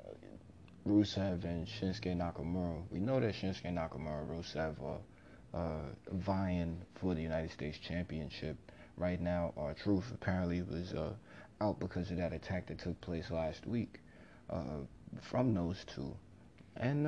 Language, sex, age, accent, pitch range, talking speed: English, male, 30-49, American, 85-105 Hz, 140 wpm